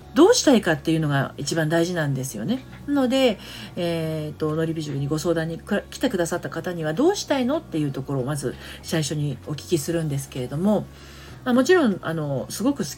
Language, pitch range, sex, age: Japanese, 135-225 Hz, female, 40-59